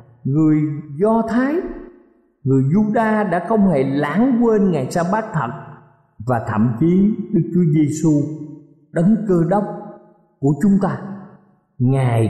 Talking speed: 130 wpm